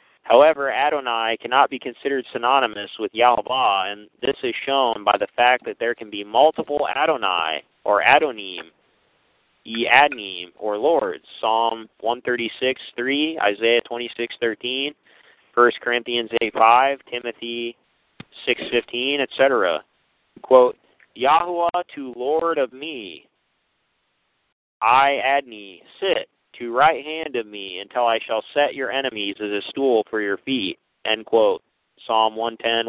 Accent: American